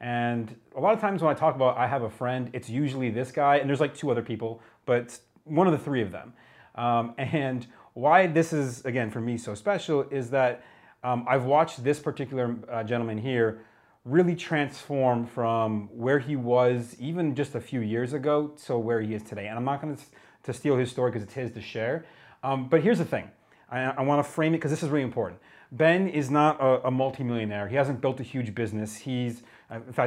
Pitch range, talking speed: 115-145 Hz, 220 wpm